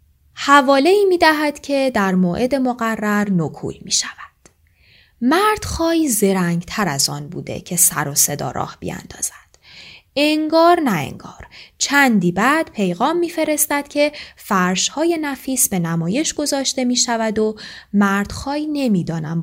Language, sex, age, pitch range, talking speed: Persian, female, 10-29, 175-280 Hz, 125 wpm